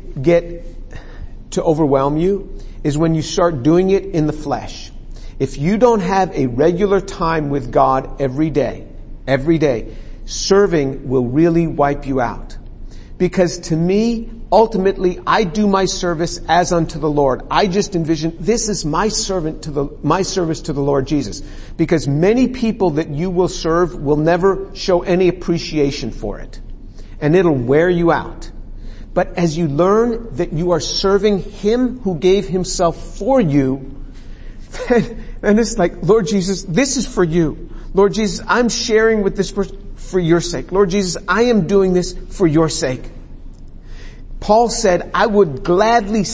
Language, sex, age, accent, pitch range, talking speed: English, male, 50-69, American, 155-210 Hz, 165 wpm